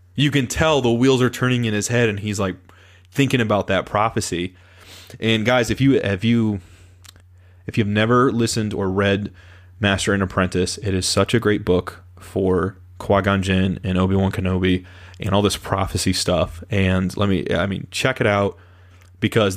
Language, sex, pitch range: English, male, 95-110 Hz